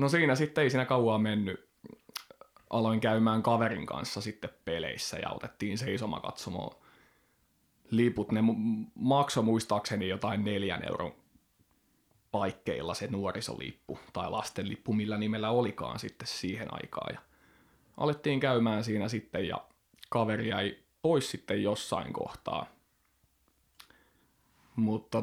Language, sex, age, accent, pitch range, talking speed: Finnish, male, 20-39, native, 100-115 Hz, 110 wpm